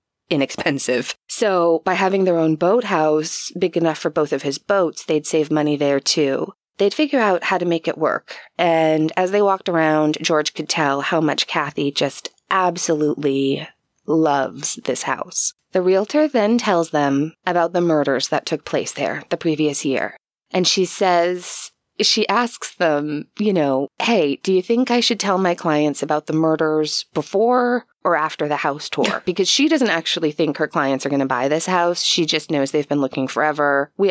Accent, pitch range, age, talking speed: American, 145-190 Hz, 20-39, 185 wpm